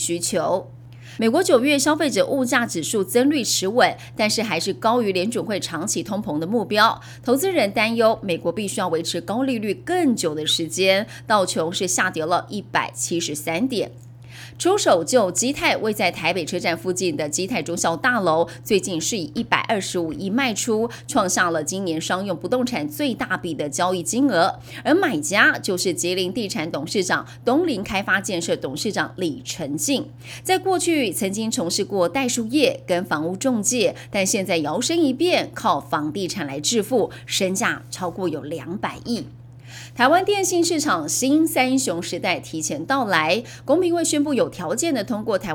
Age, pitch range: 20-39, 175-260 Hz